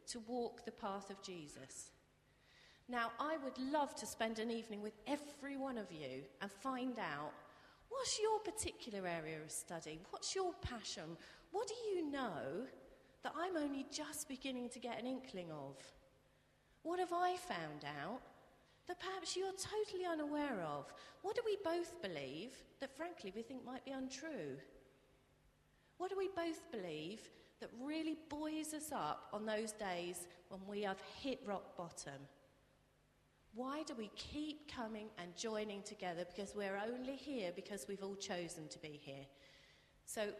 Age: 40-59